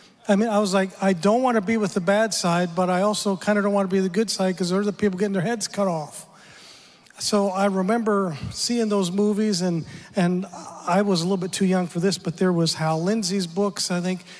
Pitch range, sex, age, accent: 170-200 Hz, male, 40-59, American